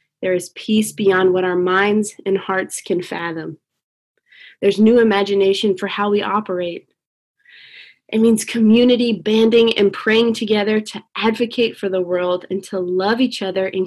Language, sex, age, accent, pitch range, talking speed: English, female, 20-39, American, 180-210 Hz, 155 wpm